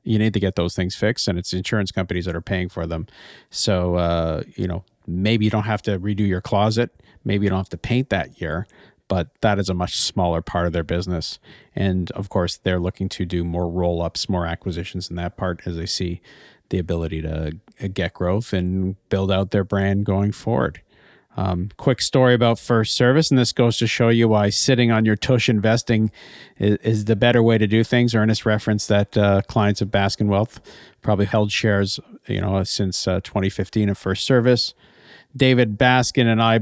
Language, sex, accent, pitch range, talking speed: English, male, American, 95-115 Hz, 205 wpm